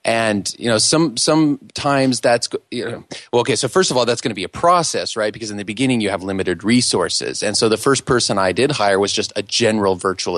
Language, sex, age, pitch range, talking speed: English, male, 30-49, 95-120 Hz, 245 wpm